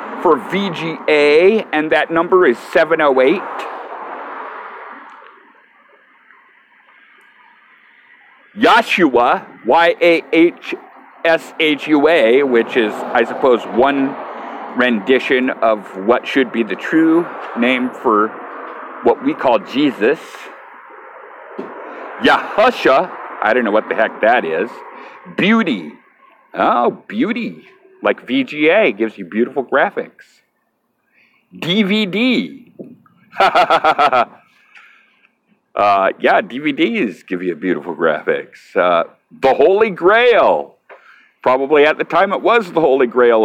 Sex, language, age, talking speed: male, English, 50-69, 100 wpm